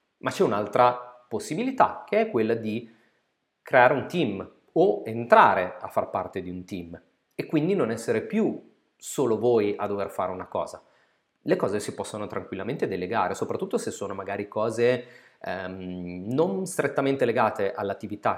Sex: male